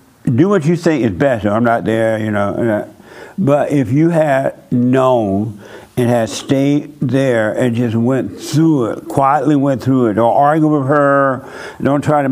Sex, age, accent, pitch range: male, 60-79, American, 125-150 Hz